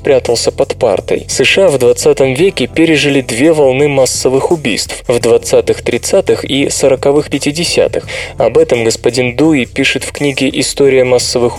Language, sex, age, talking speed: Russian, male, 20-39, 140 wpm